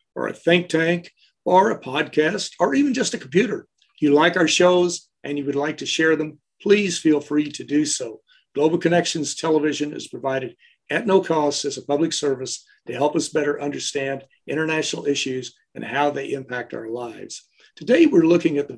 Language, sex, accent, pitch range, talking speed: English, male, American, 140-170 Hz, 190 wpm